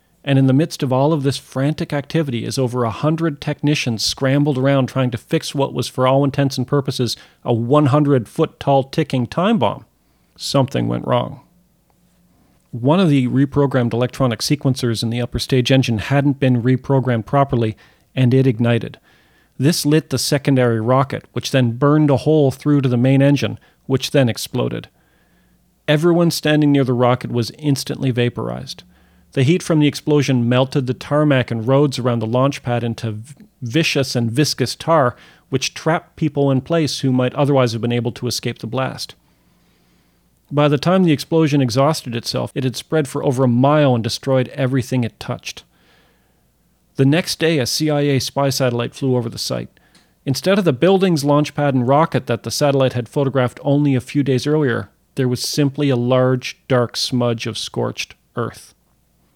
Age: 40-59